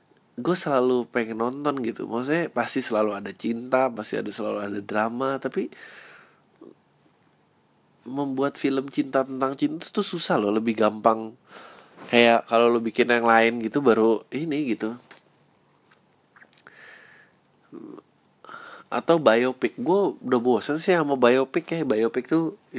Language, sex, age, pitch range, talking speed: Indonesian, male, 20-39, 110-135 Hz, 125 wpm